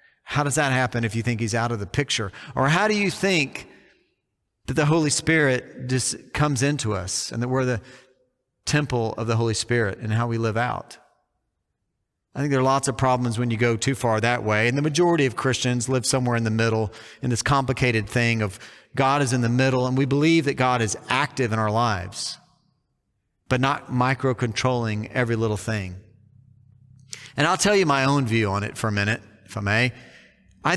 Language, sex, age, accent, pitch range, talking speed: English, male, 40-59, American, 115-140 Hz, 205 wpm